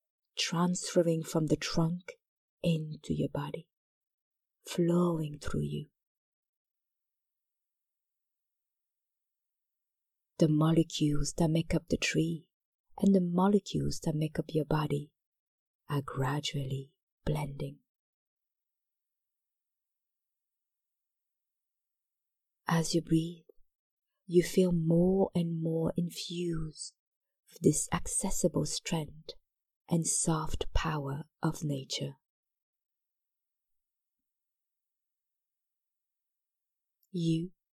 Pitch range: 150-175 Hz